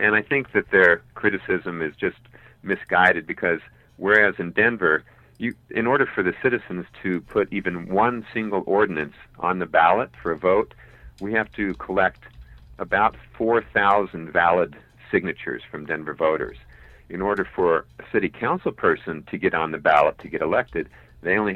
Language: English